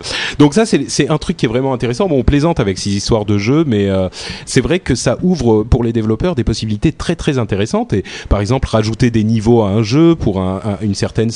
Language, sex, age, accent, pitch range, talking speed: French, male, 30-49, French, 95-125 Hz, 250 wpm